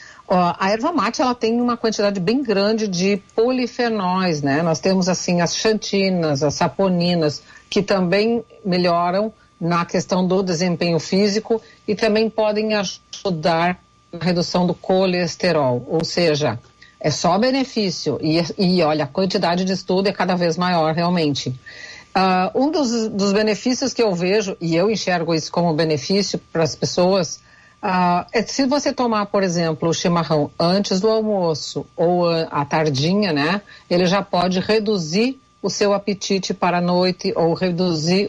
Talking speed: 150 wpm